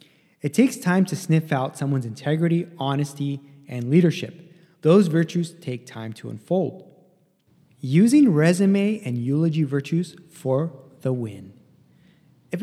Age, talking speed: 20-39, 125 wpm